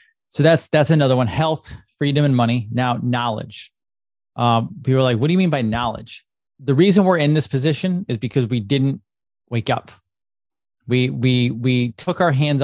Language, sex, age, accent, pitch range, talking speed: English, male, 20-39, American, 115-150 Hz, 185 wpm